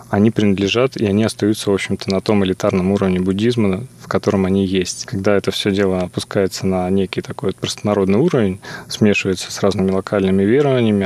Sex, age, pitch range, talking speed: male, 20-39, 95-110 Hz, 170 wpm